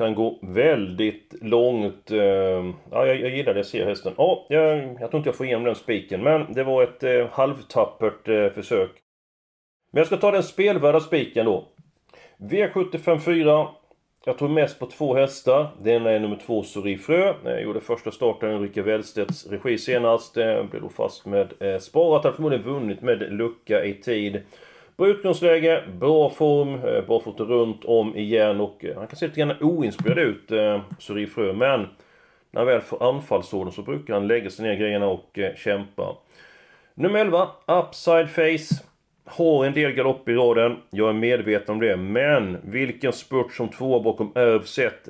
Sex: male